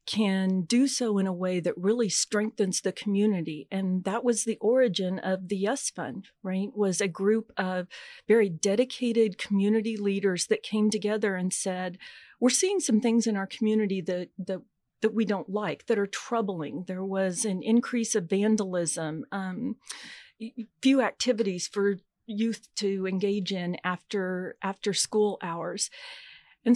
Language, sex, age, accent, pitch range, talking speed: English, female, 40-59, American, 190-230 Hz, 155 wpm